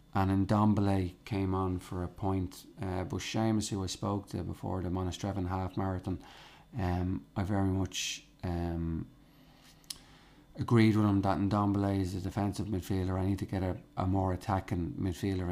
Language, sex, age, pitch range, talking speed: English, male, 30-49, 95-115 Hz, 160 wpm